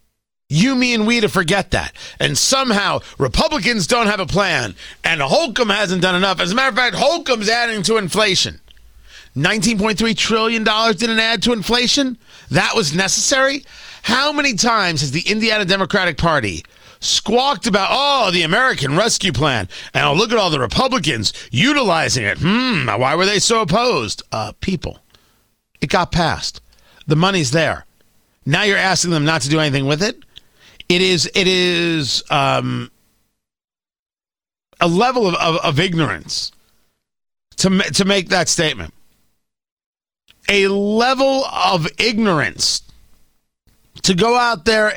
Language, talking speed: English, 145 wpm